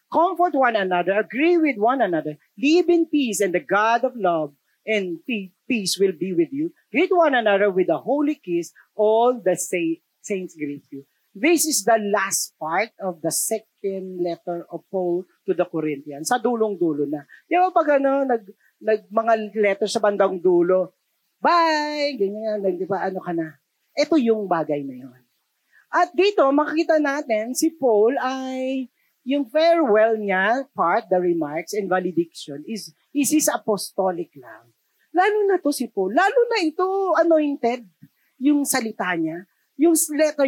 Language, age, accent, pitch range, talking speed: Filipino, 40-59, native, 185-295 Hz, 155 wpm